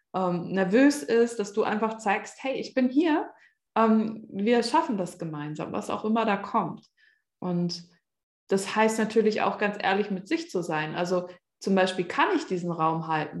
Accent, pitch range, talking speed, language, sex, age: German, 180-220 Hz, 180 wpm, German, female, 20-39